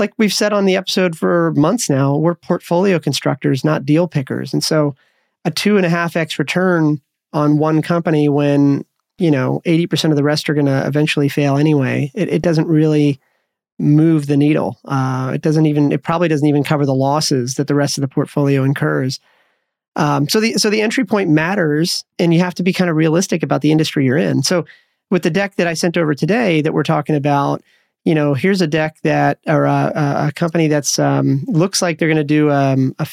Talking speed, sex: 215 wpm, male